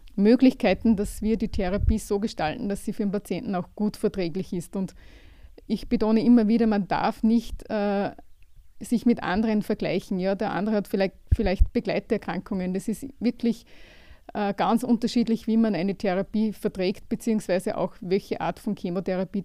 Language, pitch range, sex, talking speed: German, 190-225 Hz, female, 165 wpm